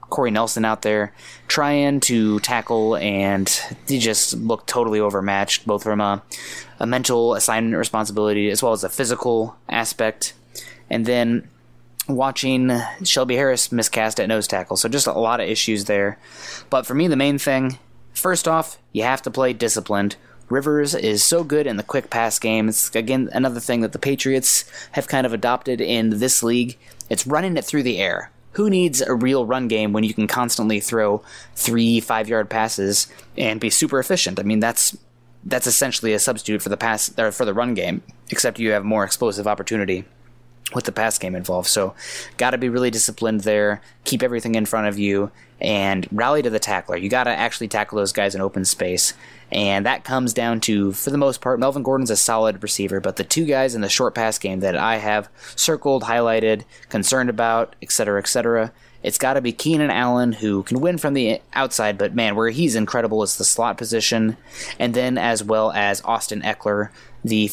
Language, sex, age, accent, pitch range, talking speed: English, male, 20-39, American, 105-130 Hz, 195 wpm